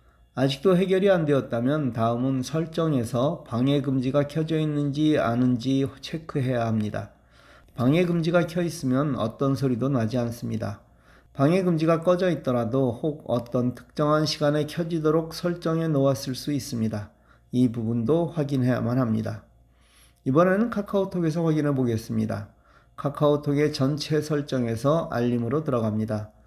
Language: Korean